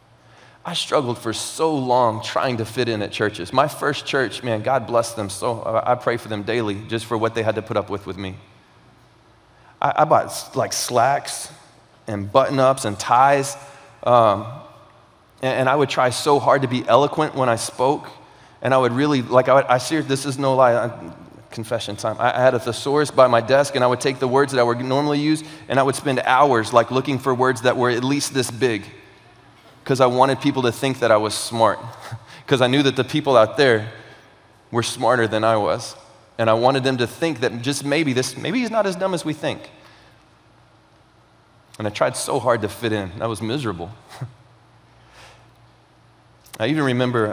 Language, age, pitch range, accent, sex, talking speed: English, 30-49, 110-135 Hz, American, male, 205 wpm